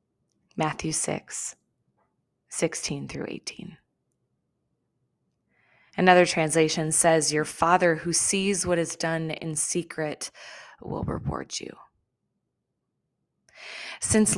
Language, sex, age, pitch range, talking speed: English, female, 20-39, 155-180 Hz, 90 wpm